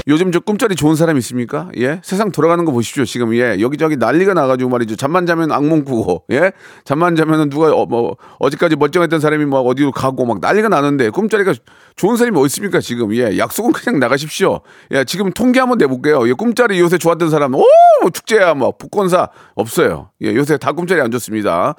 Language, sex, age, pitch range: Korean, male, 40-59, 125-190 Hz